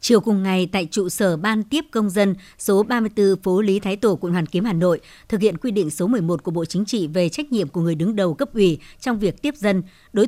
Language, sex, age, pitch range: Vietnamese, male, 60-79, 180-220 Hz